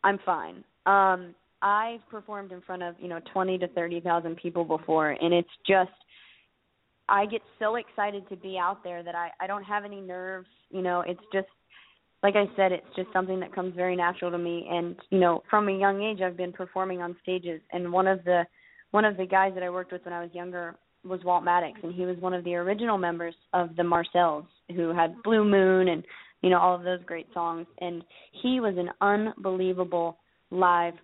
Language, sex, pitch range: English, female, 175-190 Hz